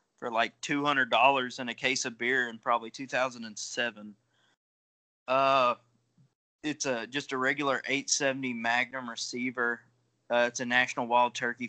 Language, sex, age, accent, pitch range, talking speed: English, male, 20-39, American, 115-135 Hz, 135 wpm